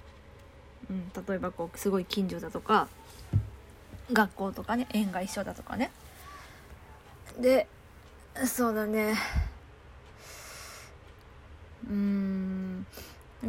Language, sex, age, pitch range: Japanese, female, 20-39, 190-275 Hz